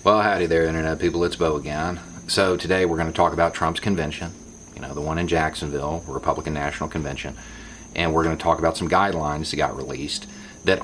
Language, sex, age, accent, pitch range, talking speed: English, male, 40-59, American, 80-105 Hz, 215 wpm